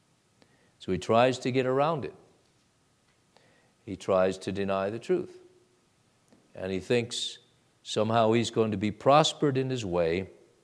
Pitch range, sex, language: 115-155 Hz, male, English